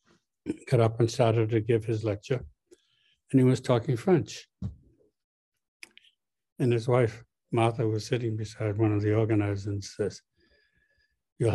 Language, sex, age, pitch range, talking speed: English, male, 60-79, 110-130 Hz, 140 wpm